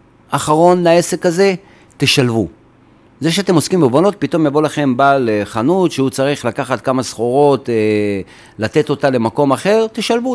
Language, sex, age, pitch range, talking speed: Hebrew, male, 40-59, 125-165 Hz, 135 wpm